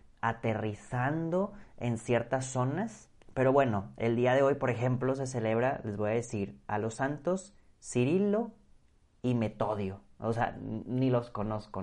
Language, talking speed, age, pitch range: Spanish, 145 wpm, 30-49, 110-130 Hz